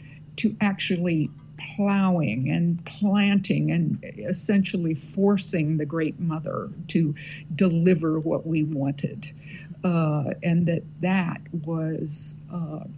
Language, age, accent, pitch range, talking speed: English, 60-79, American, 150-175 Hz, 100 wpm